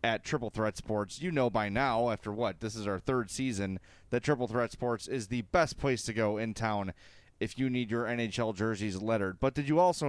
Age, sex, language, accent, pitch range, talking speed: 30-49, male, English, American, 110-145 Hz, 225 wpm